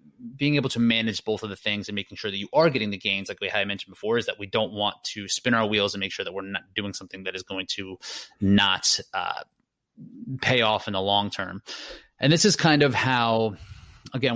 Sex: male